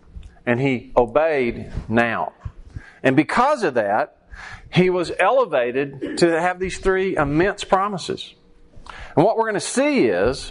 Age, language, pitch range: 40-59, English, 120-180 Hz